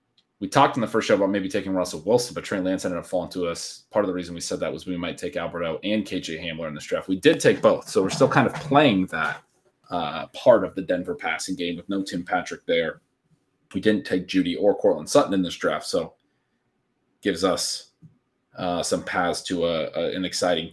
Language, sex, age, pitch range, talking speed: English, male, 30-49, 95-130 Hz, 235 wpm